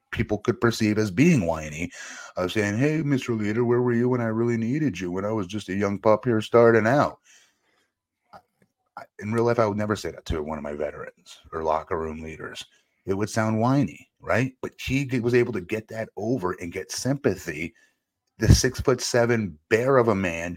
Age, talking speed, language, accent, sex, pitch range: 30-49, 205 wpm, English, American, male, 90-120 Hz